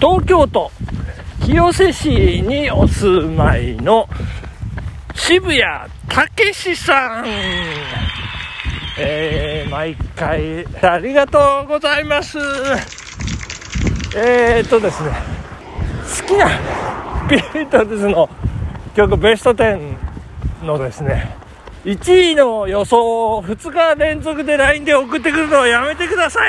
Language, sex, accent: Japanese, male, native